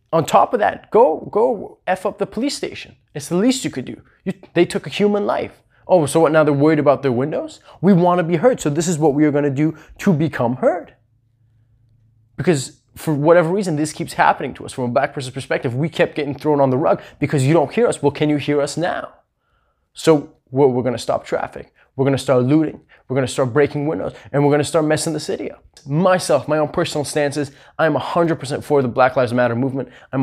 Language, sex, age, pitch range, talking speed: English, male, 20-39, 130-160 Hz, 240 wpm